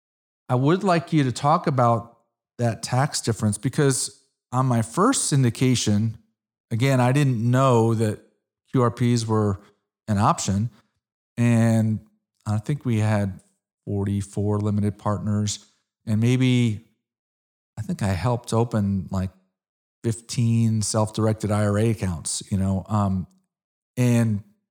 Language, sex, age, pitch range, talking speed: English, male, 40-59, 105-125 Hz, 115 wpm